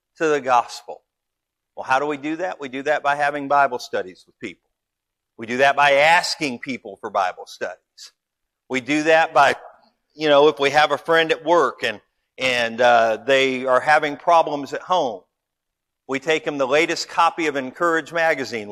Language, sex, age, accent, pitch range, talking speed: English, male, 50-69, American, 125-165 Hz, 185 wpm